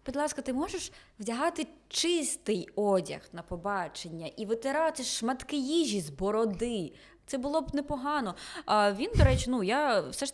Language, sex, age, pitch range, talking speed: Ukrainian, female, 20-39, 185-250 Hz, 155 wpm